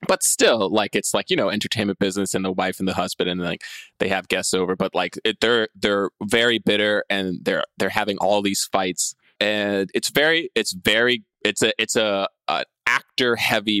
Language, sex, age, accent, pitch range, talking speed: English, male, 20-39, American, 100-115 Hz, 200 wpm